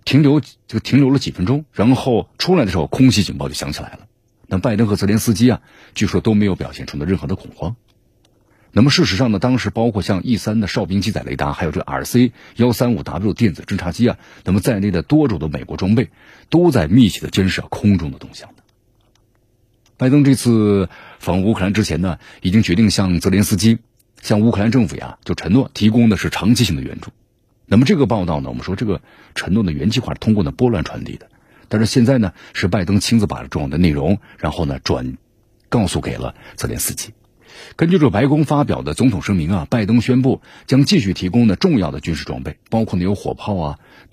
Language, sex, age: Chinese, male, 50-69